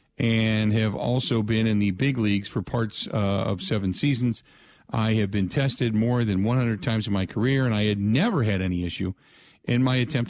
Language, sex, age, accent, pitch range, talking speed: English, male, 50-69, American, 100-135 Hz, 205 wpm